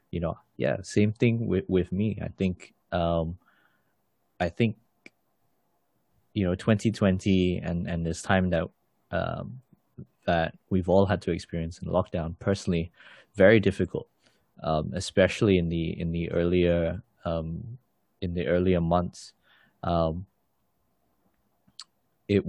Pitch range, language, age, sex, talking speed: 85-100 Hz, English, 20-39, male, 125 wpm